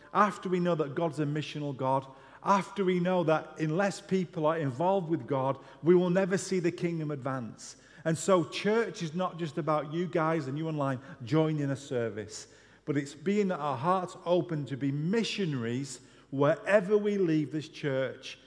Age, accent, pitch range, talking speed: 40-59, British, 130-180 Hz, 175 wpm